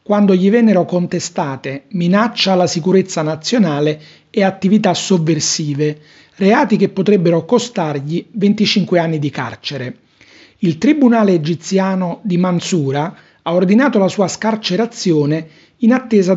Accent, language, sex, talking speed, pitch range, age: native, Italian, male, 115 wpm, 160-200 Hz, 40-59